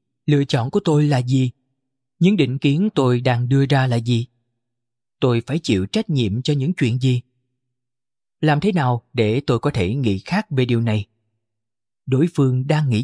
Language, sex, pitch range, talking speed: Vietnamese, male, 120-145 Hz, 185 wpm